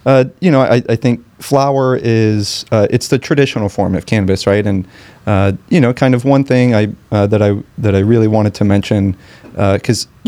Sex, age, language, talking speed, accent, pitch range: male, 30-49, English, 210 wpm, American, 100-115 Hz